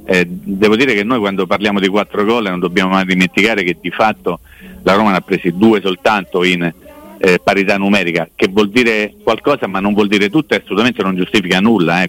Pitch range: 95-115 Hz